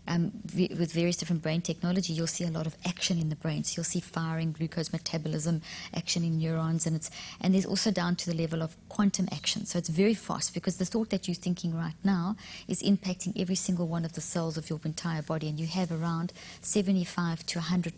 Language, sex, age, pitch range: English, female, 30-49, 165-185 Hz